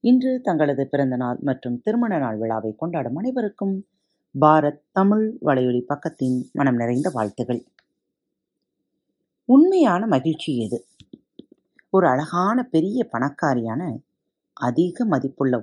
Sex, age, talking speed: female, 30-49, 95 wpm